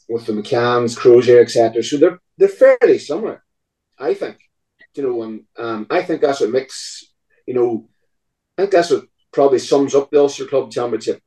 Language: English